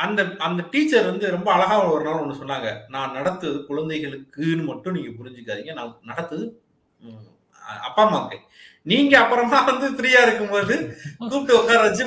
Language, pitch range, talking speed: Tamil, 135-185 Hz, 50 wpm